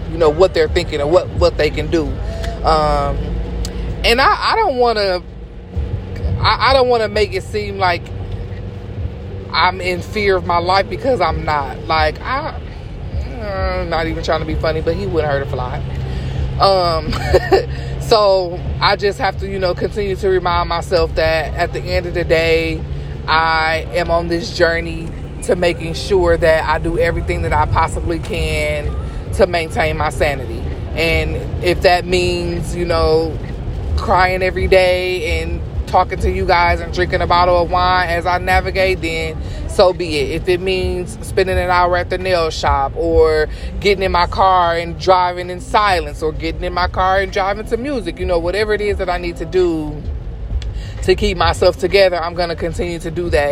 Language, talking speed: English, 185 wpm